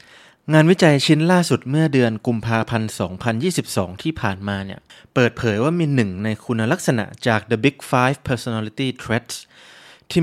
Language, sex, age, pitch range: Thai, male, 20-39, 110-150 Hz